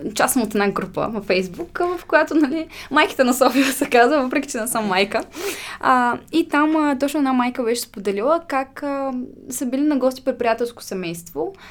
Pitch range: 230-310 Hz